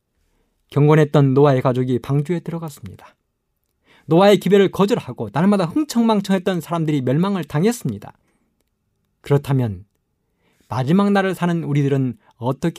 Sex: male